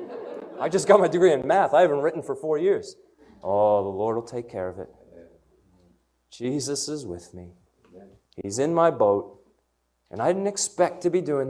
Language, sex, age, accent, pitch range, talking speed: English, male, 30-49, American, 115-190 Hz, 190 wpm